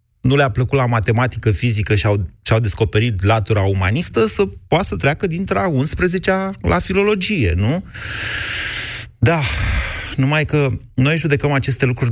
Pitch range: 105-130 Hz